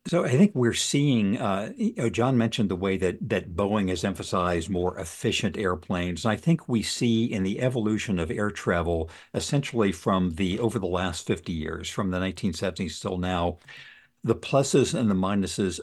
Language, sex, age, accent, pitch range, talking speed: English, male, 60-79, American, 90-115 Hz, 175 wpm